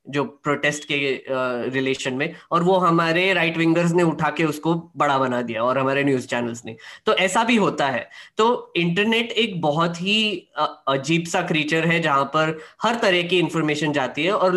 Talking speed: 185 wpm